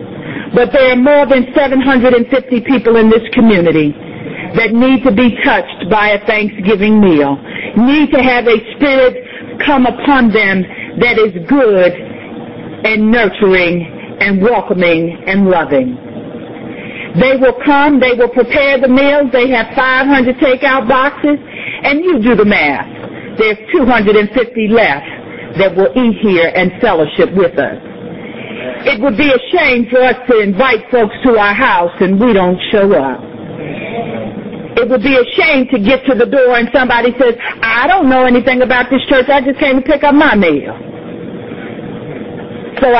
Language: English